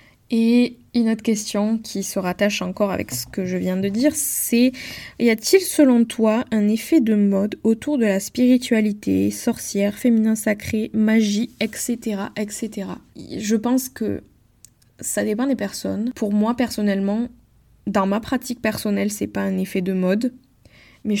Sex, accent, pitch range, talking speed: female, French, 200-225 Hz, 155 wpm